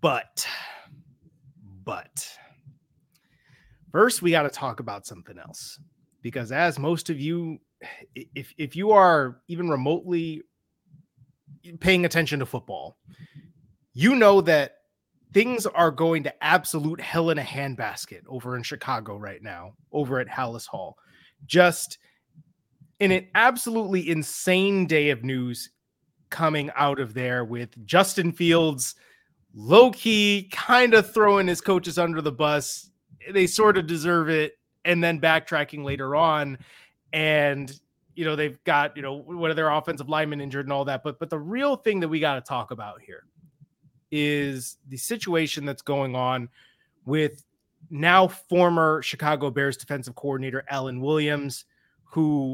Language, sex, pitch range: English, male, 135-170 Hz